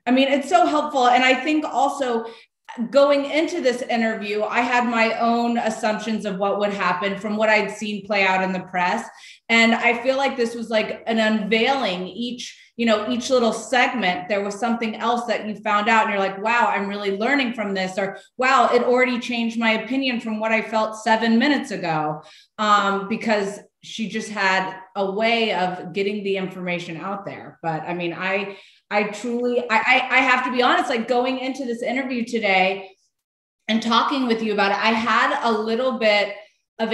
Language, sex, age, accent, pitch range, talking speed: English, female, 30-49, American, 205-255 Hz, 195 wpm